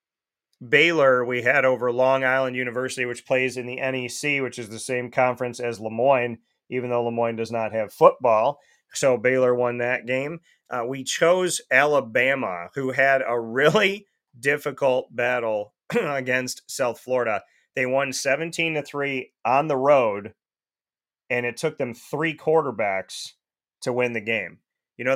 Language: English